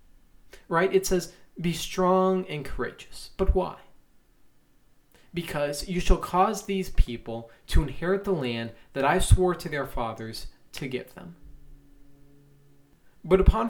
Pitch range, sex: 130-180 Hz, male